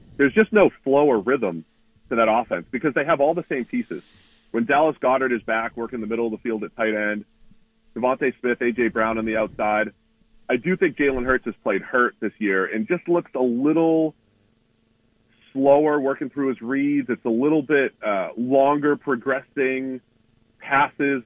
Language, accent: English, American